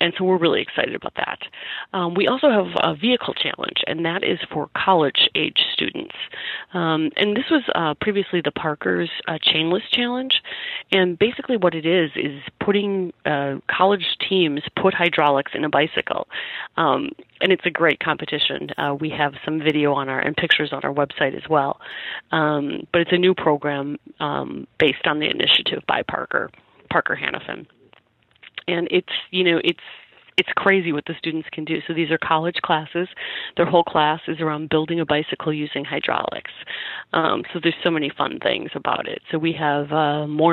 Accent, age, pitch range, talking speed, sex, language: American, 30-49, 150-185 Hz, 180 wpm, female, English